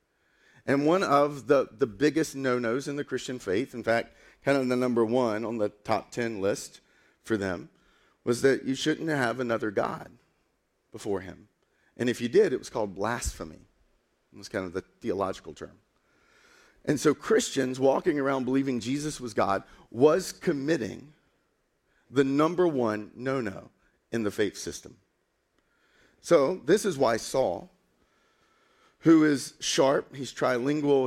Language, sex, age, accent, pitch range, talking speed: English, male, 40-59, American, 110-140 Hz, 150 wpm